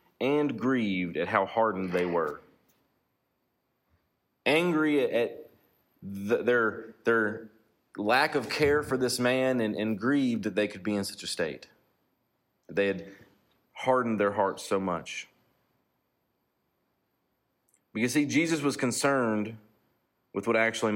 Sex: male